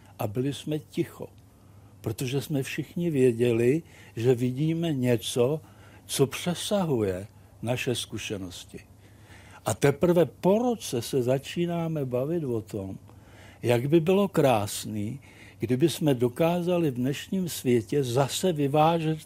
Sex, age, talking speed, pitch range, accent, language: male, 60-79, 110 wpm, 105-160 Hz, native, Czech